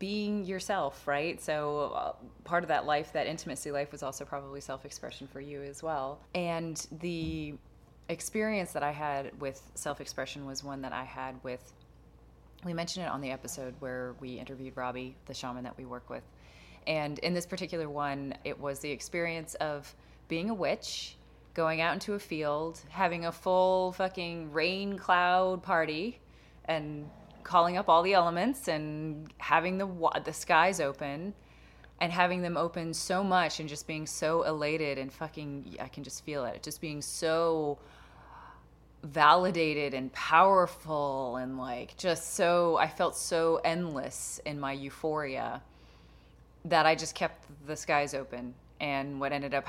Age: 20-39